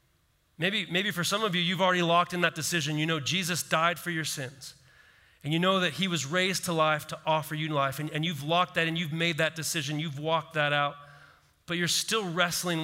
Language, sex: English, male